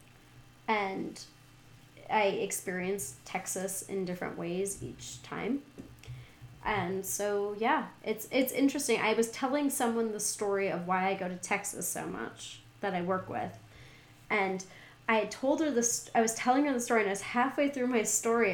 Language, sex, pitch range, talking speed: English, female, 195-275 Hz, 170 wpm